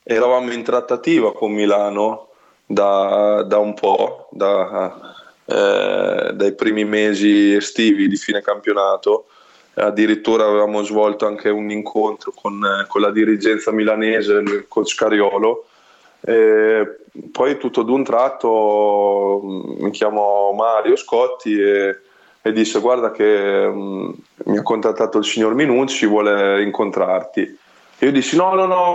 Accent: native